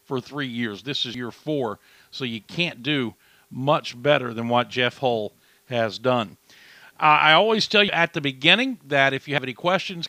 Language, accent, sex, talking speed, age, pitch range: English, American, male, 195 wpm, 50-69, 130-160 Hz